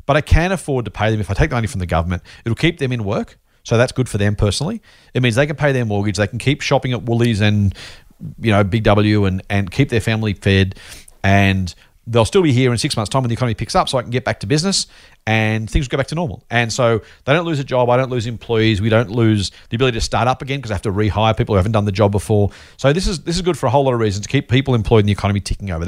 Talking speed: 305 wpm